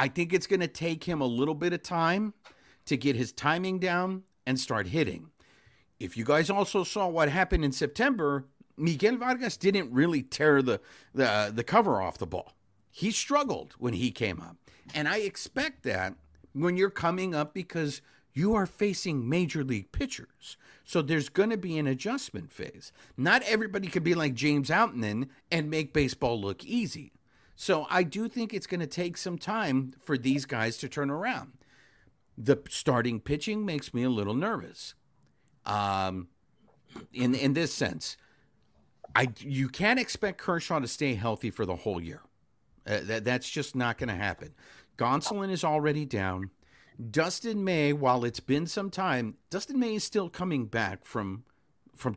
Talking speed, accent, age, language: 175 wpm, American, 50-69, English